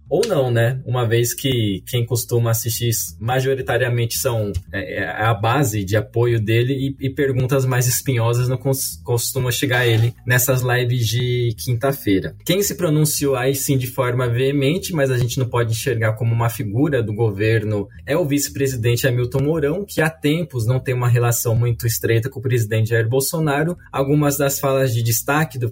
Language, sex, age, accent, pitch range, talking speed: Portuguese, male, 20-39, Brazilian, 120-145 Hz, 175 wpm